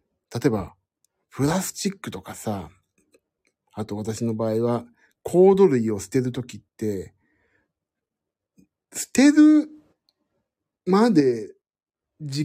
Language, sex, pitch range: Japanese, male, 110-170 Hz